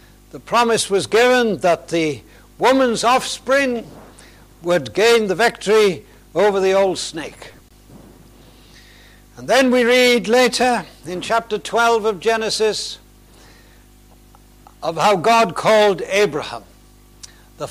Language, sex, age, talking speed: English, male, 70-89, 110 wpm